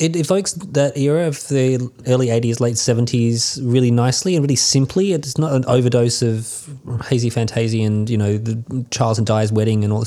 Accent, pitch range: Australian, 110-130 Hz